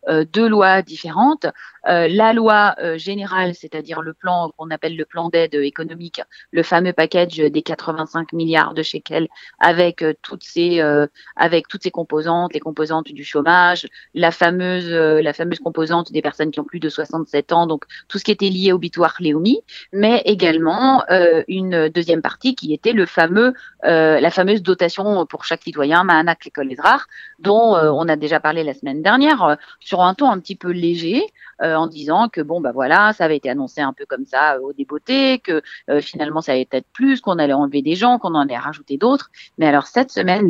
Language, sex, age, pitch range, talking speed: French, female, 40-59, 155-190 Hz, 205 wpm